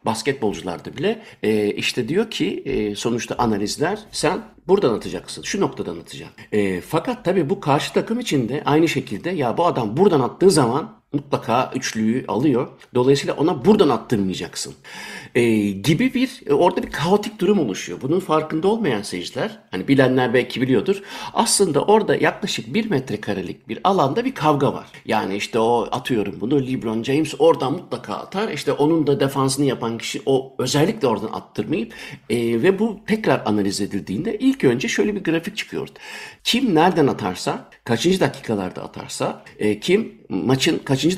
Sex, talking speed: male, 150 wpm